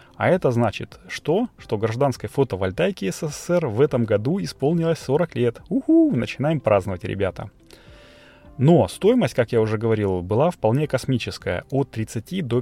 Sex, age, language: male, 30-49, Russian